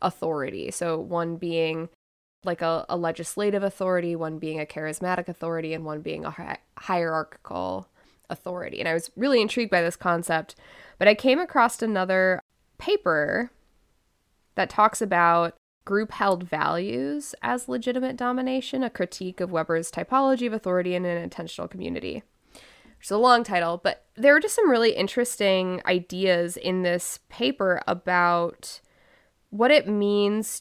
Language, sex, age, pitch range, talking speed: English, female, 10-29, 170-210 Hz, 145 wpm